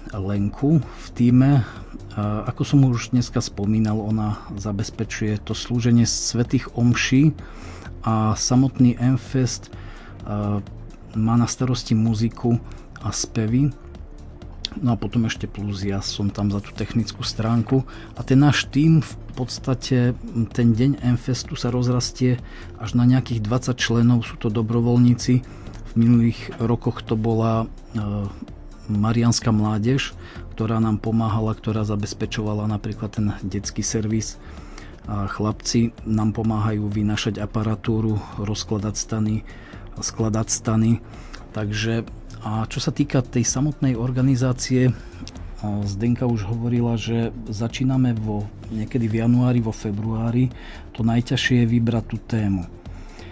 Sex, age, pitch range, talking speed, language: male, 40-59, 105-120 Hz, 120 wpm, Slovak